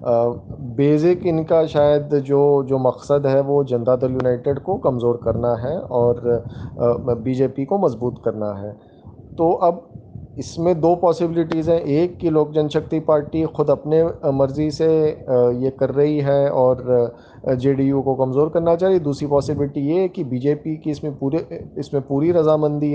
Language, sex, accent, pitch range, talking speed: Hindi, male, native, 130-160 Hz, 155 wpm